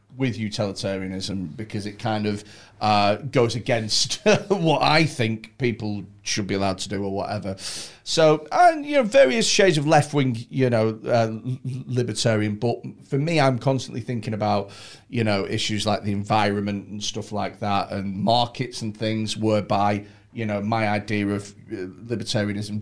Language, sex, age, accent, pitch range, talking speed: English, male, 40-59, British, 105-135 Hz, 160 wpm